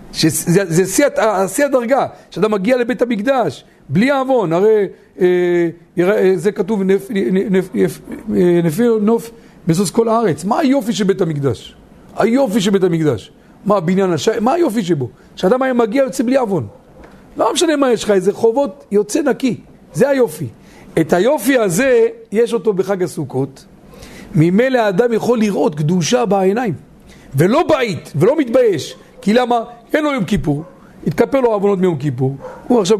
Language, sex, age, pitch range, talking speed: Hebrew, male, 50-69, 170-230 Hz, 150 wpm